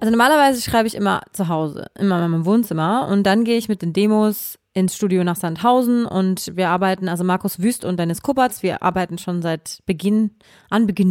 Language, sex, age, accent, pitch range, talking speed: German, female, 30-49, German, 175-210 Hz, 205 wpm